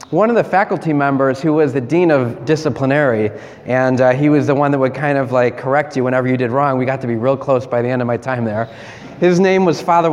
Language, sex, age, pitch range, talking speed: English, male, 20-39, 125-155 Hz, 265 wpm